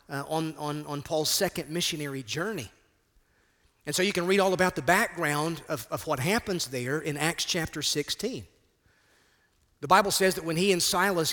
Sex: male